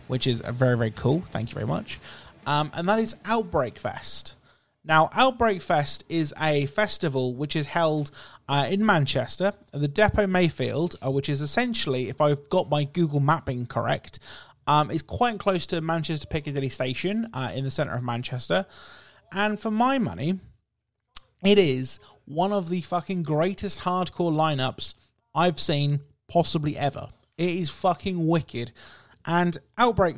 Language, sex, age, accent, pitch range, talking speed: English, male, 30-49, British, 135-190 Hz, 155 wpm